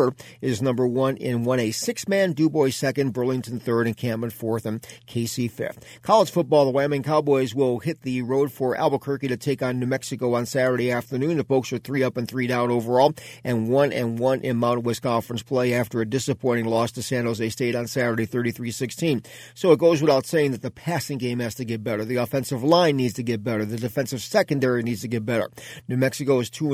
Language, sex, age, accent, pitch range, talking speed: English, male, 40-59, American, 120-140 Hz, 220 wpm